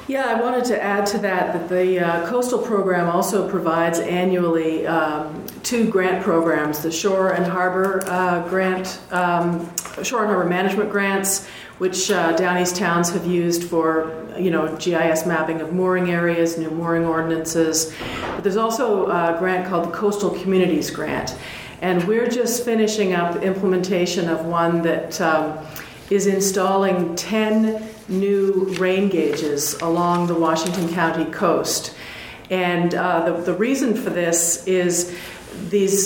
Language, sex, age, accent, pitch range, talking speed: English, female, 50-69, American, 170-200 Hz, 145 wpm